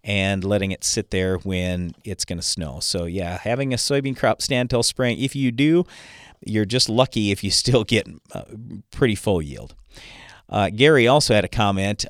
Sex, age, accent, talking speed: male, 40-59, American, 195 wpm